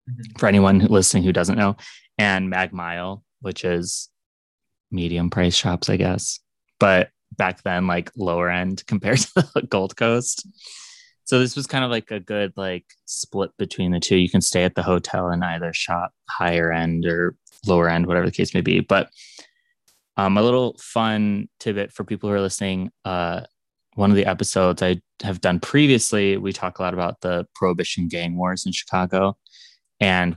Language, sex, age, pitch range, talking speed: English, male, 20-39, 90-110 Hz, 180 wpm